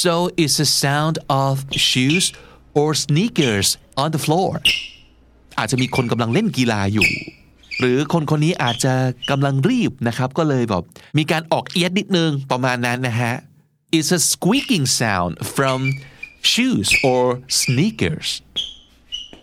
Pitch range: 125-160 Hz